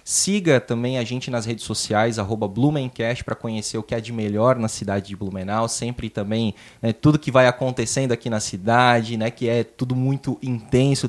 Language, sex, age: Portuguese, male, 20-39